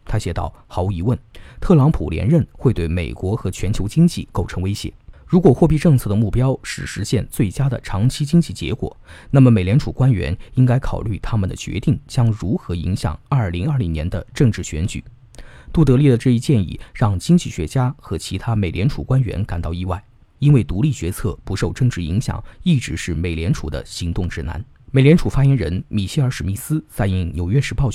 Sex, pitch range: male, 95-135 Hz